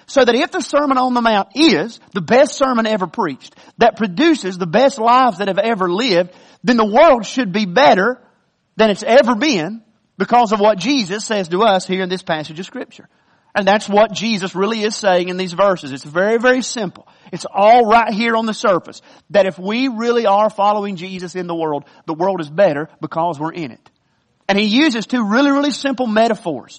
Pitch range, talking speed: 185-245 Hz, 210 wpm